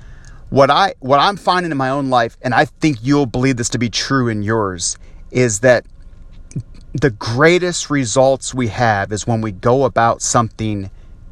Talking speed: 175 wpm